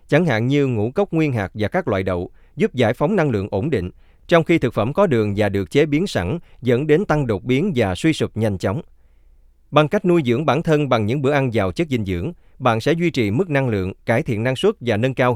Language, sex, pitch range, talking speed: Vietnamese, male, 100-145 Hz, 260 wpm